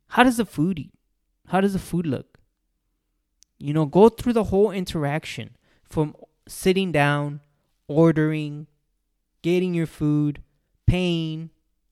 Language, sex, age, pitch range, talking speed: English, male, 20-39, 135-185 Hz, 125 wpm